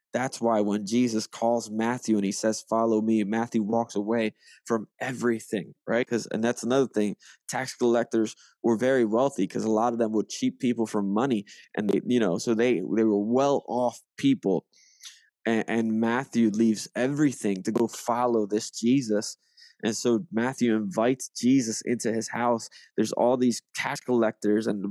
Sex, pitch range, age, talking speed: male, 110-130 Hz, 20-39, 175 wpm